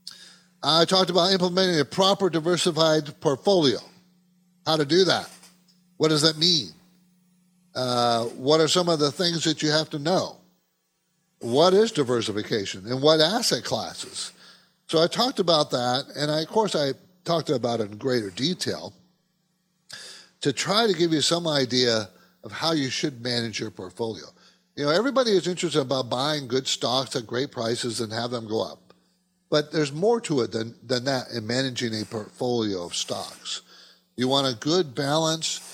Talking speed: 170 wpm